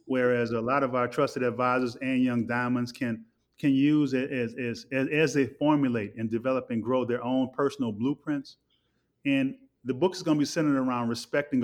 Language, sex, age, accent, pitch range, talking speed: English, male, 30-49, American, 120-145 Hz, 195 wpm